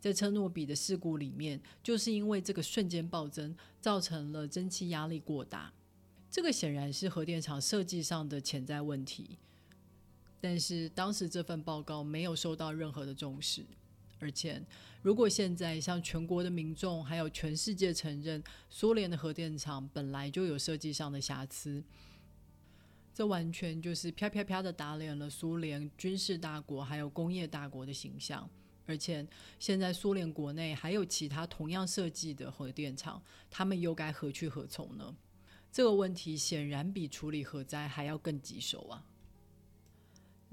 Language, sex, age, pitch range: Chinese, female, 30-49, 140-170 Hz